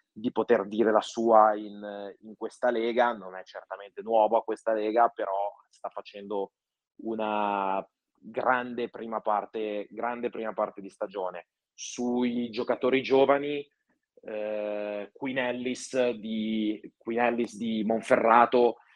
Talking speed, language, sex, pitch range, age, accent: 115 wpm, Italian, male, 105-120 Hz, 20-39, native